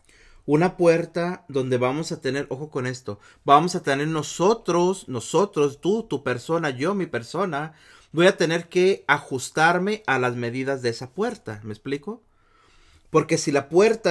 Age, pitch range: 40-59, 115-165 Hz